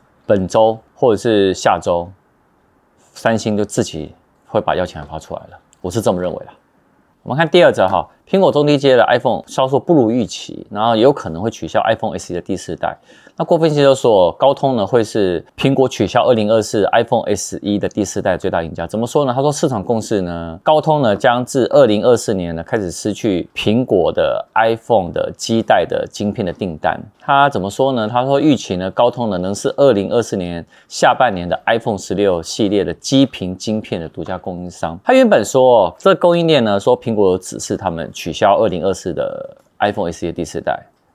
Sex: male